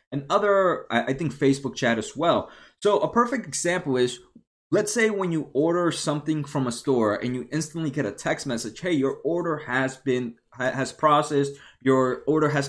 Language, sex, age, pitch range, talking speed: English, male, 20-39, 130-175 Hz, 185 wpm